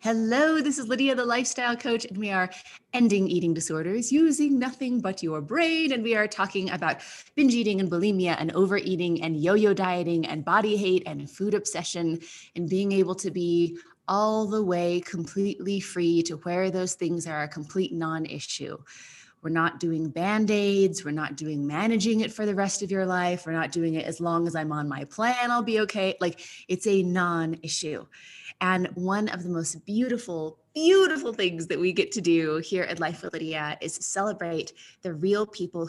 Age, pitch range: 20-39, 165-210 Hz